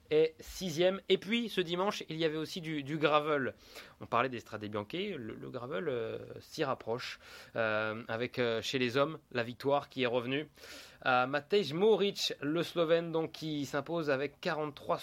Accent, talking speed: French, 180 wpm